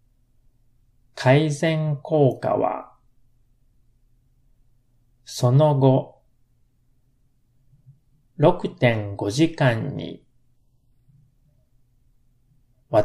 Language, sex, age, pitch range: Japanese, male, 30-49, 120-130 Hz